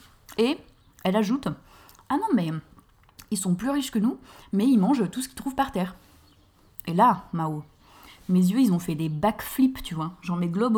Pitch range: 175-240 Hz